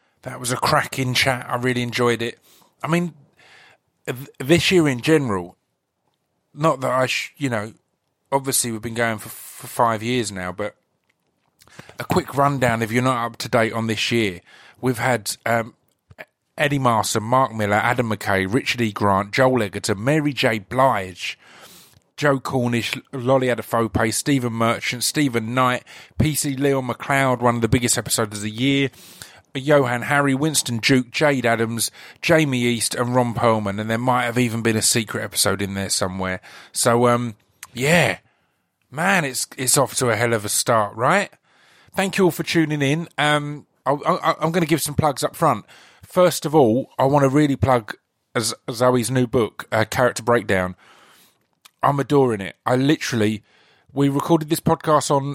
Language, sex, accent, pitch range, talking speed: English, male, British, 115-140 Hz, 170 wpm